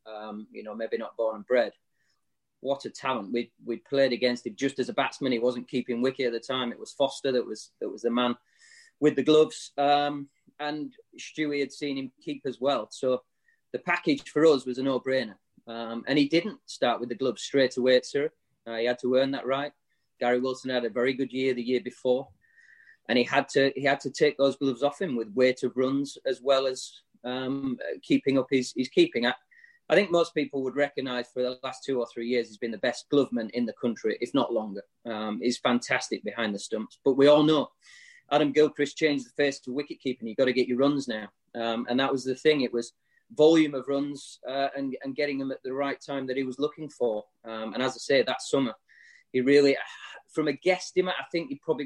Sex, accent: male, British